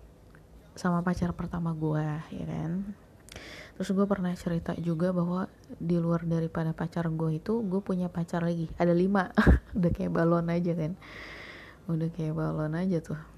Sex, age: female, 20-39